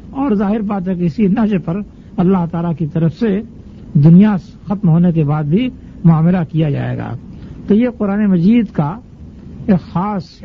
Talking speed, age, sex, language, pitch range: 170 wpm, 60-79, male, Urdu, 175-215 Hz